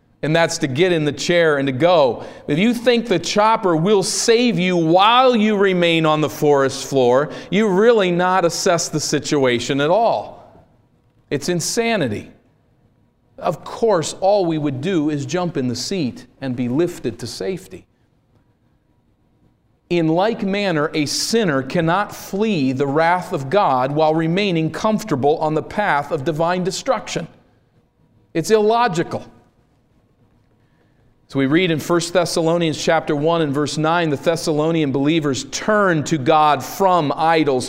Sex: male